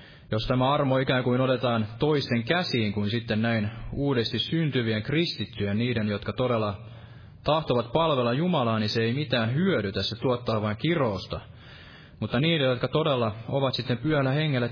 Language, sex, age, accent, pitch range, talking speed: Finnish, male, 20-39, native, 110-140 Hz, 150 wpm